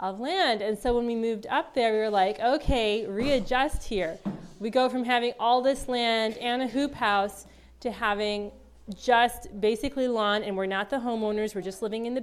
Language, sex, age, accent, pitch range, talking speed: English, female, 20-39, American, 200-240 Hz, 200 wpm